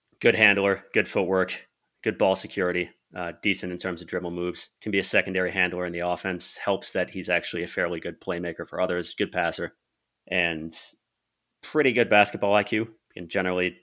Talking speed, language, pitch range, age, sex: 180 wpm, English, 85-95 Hz, 30-49, male